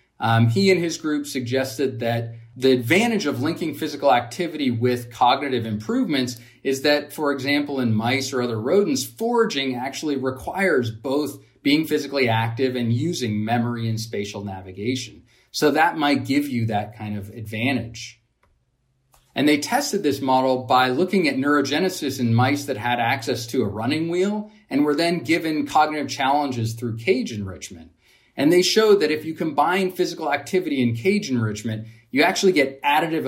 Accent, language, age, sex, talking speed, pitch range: American, English, 30-49, male, 160 wpm, 115-150 Hz